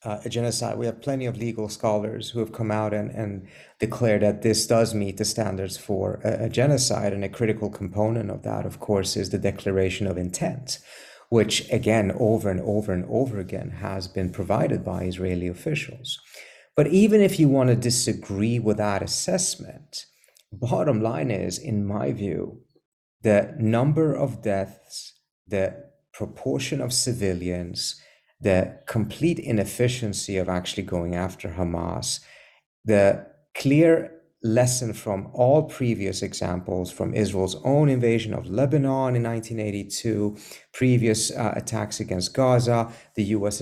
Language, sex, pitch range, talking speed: English, male, 95-120 Hz, 145 wpm